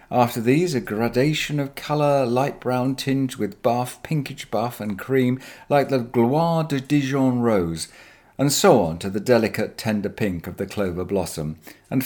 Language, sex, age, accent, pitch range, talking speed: English, male, 50-69, British, 100-135 Hz, 170 wpm